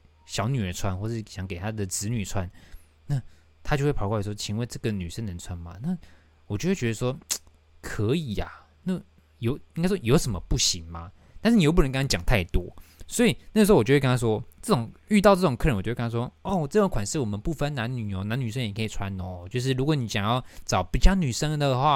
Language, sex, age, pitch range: Chinese, male, 20-39, 95-130 Hz